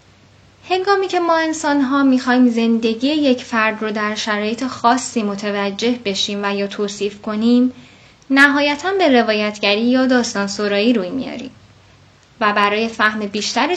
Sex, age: female, 10-29